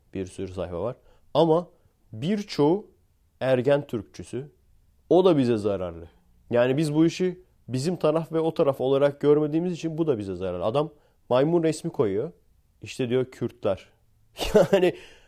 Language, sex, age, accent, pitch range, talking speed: Turkish, male, 40-59, native, 100-135 Hz, 140 wpm